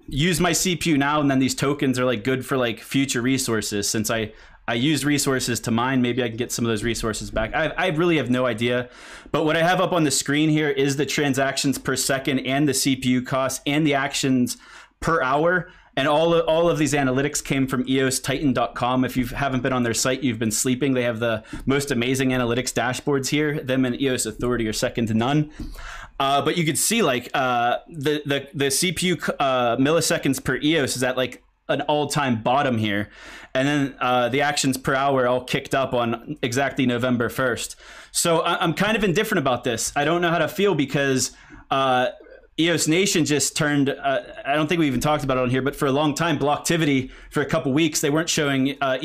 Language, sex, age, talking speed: English, male, 20-39, 215 wpm